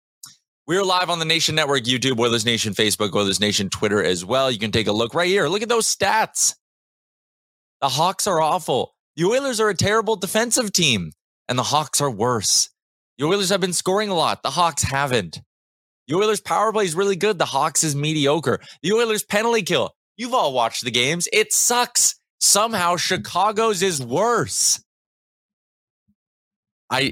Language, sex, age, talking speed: English, male, 20-39, 175 wpm